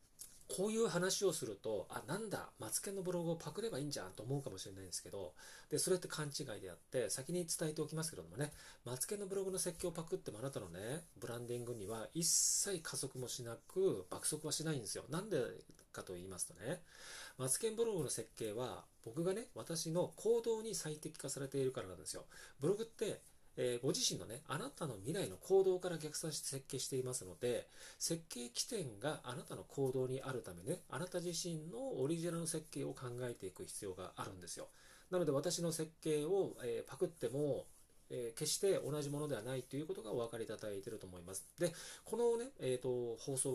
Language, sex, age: Japanese, male, 40-59